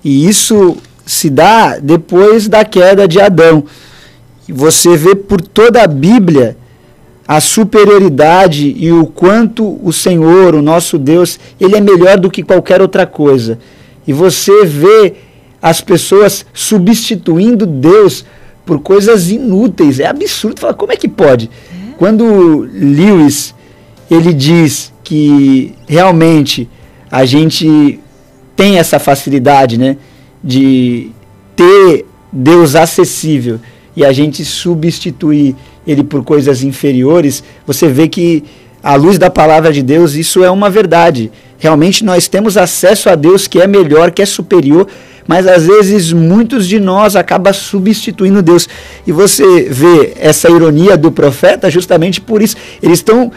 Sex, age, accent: male, 50-69, Brazilian